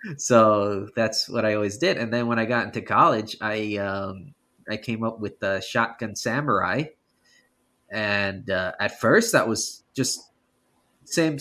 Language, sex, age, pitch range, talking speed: English, male, 20-39, 105-150 Hz, 160 wpm